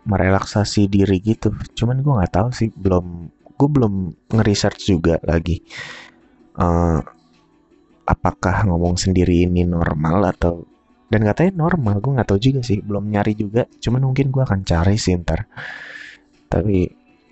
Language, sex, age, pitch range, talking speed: Indonesian, male, 20-39, 85-115 Hz, 140 wpm